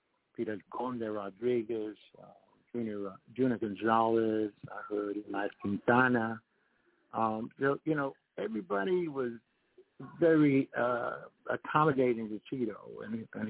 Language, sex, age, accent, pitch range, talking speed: English, male, 60-79, American, 105-125 Hz, 105 wpm